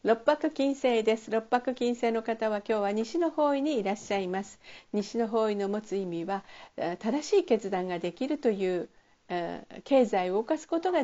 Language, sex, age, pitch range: Japanese, female, 50-69, 195-270 Hz